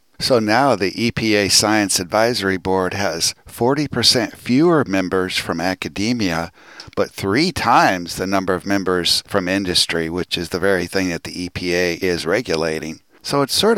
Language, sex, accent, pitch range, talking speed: English, male, American, 90-105 Hz, 150 wpm